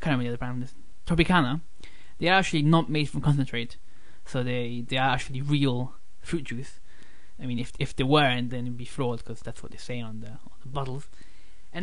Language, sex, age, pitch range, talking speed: English, male, 20-39, 125-160 Hz, 225 wpm